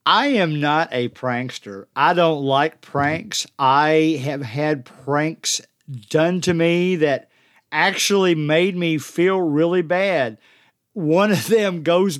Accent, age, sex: American, 50-69, male